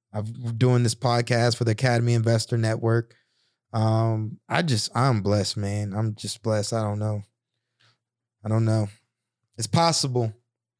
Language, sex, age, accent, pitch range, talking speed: English, male, 20-39, American, 115-130 Hz, 145 wpm